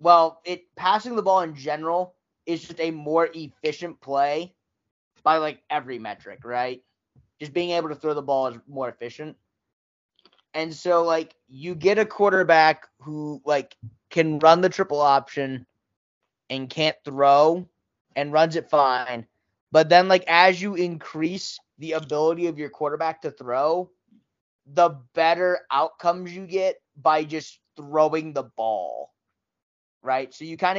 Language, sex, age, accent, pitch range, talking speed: English, male, 20-39, American, 145-175 Hz, 150 wpm